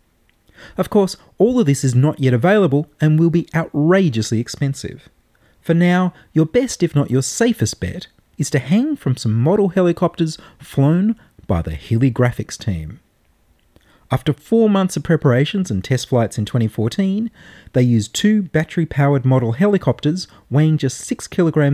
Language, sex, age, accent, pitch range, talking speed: English, male, 30-49, Australian, 115-175 Hz, 150 wpm